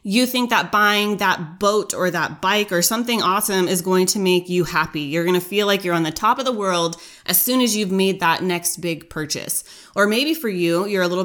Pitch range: 180-225 Hz